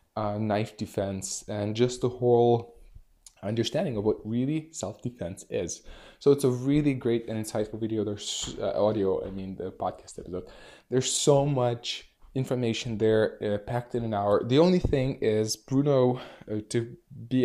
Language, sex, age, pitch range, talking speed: English, male, 20-39, 105-125 Hz, 160 wpm